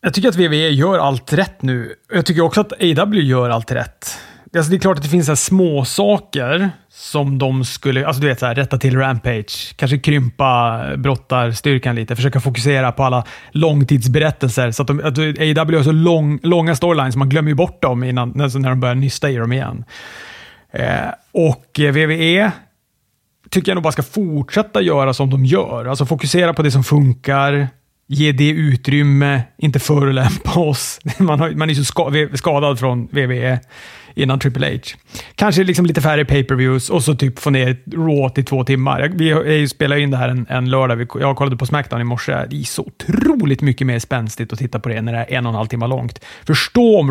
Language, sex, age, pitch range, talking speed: Swedish, male, 30-49, 130-160 Hz, 205 wpm